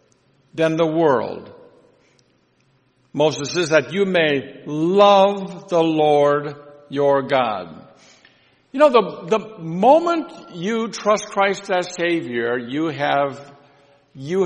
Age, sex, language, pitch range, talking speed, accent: 60-79, male, English, 140-190 Hz, 110 wpm, American